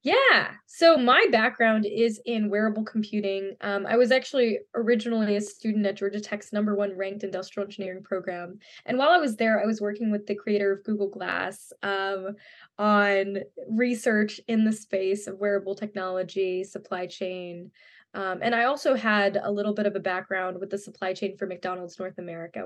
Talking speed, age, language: 180 wpm, 10-29, English